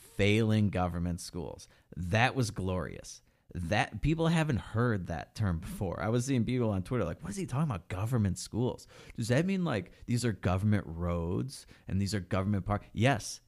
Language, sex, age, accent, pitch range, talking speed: English, male, 30-49, American, 95-120 Hz, 185 wpm